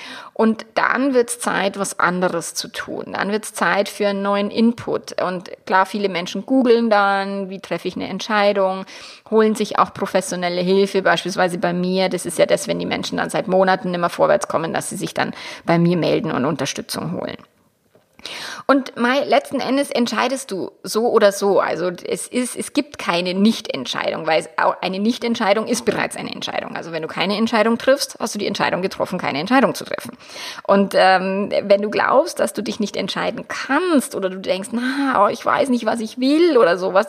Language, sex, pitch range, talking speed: German, female, 190-250 Hz, 200 wpm